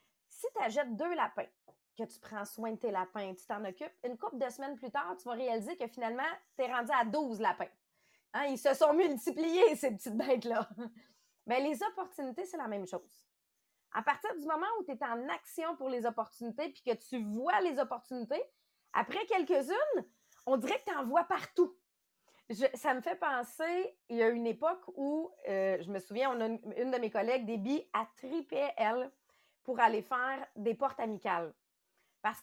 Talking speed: 195 wpm